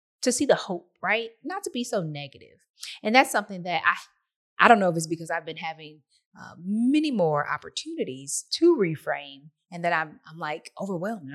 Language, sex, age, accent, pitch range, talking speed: English, female, 20-39, American, 165-215 Hz, 200 wpm